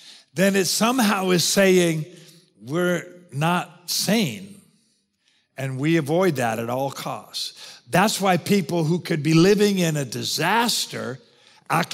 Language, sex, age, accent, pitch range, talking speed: English, male, 50-69, American, 160-215 Hz, 130 wpm